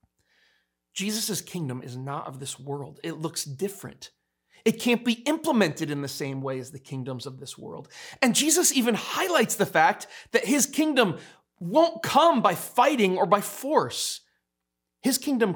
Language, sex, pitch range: English, male, 130-205 Hz